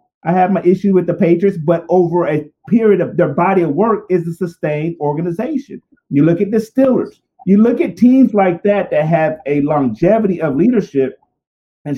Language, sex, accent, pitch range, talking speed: English, male, American, 150-200 Hz, 190 wpm